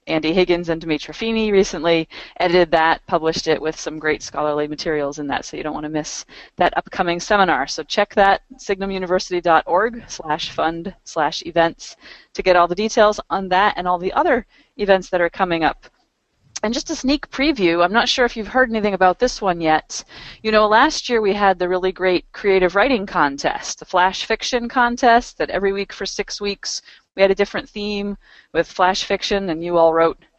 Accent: American